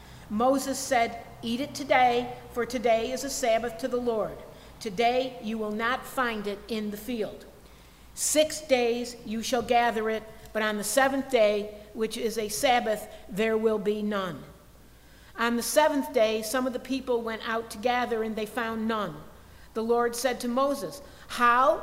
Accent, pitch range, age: American, 220-265 Hz, 50-69